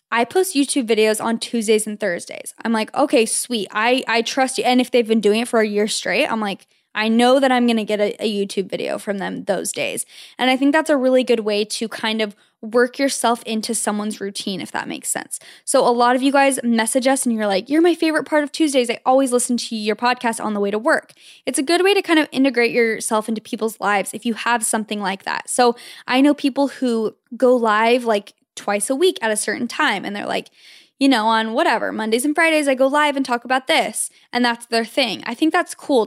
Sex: female